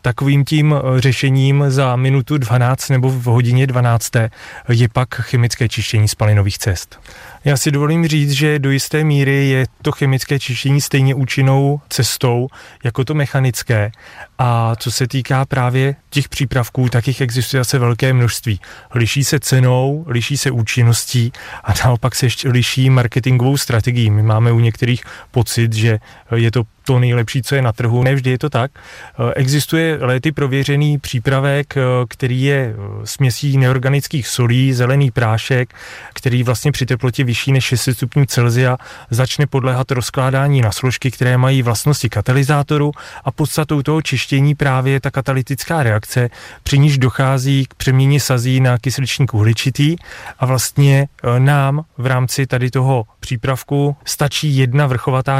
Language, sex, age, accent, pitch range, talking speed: Czech, male, 30-49, native, 120-140 Hz, 145 wpm